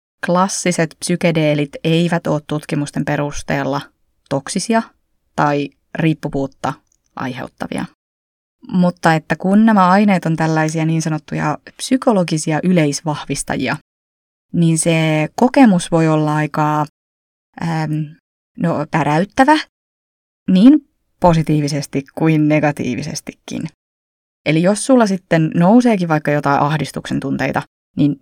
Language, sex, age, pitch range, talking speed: Finnish, female, 20-39, 145-185 Hz, 85 wpm